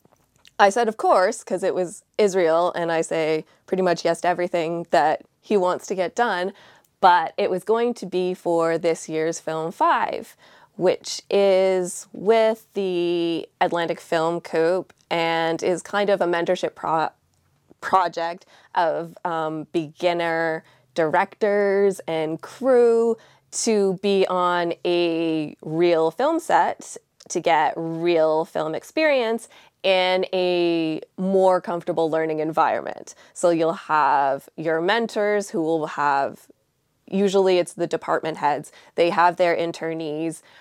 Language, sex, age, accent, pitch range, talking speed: English, female, 20-39, American, 160-190 Hz, 130 wpm